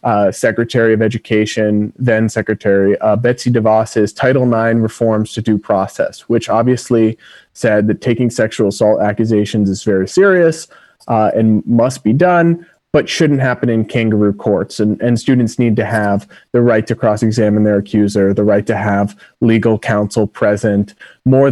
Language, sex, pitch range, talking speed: English, male, 110-130 Hz, 155 wpm